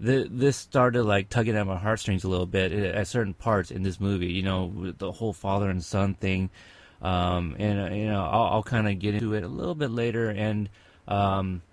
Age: 30-49